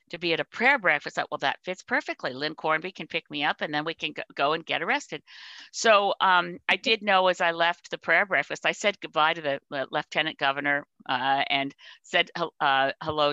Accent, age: American, 50-69